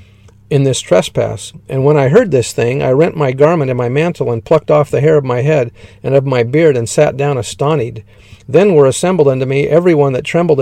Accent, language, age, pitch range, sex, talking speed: American, English, 50-69, 120-150 Hz, male, 230 wpm